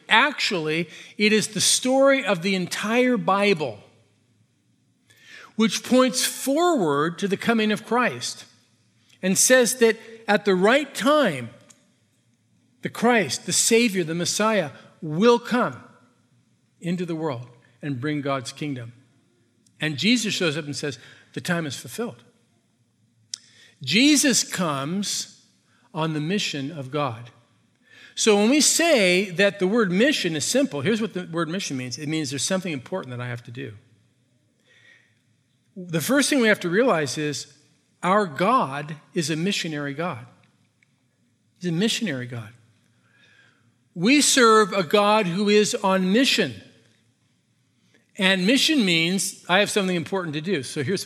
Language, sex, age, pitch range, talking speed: English, male, 50-69, 130-210 Hz, 140 wpm